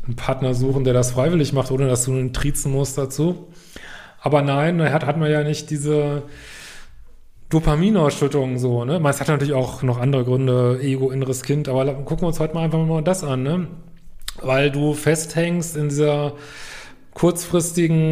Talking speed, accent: 170 wpm, German